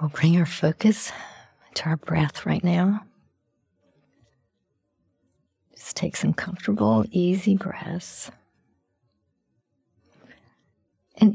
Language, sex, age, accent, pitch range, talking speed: English, female, 50-69, American, 145-185 Hz, 85 wpm